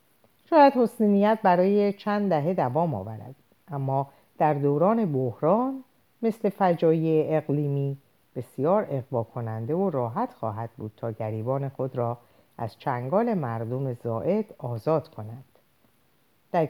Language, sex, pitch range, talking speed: Persian, female, 125-185 Hz, 115 wpm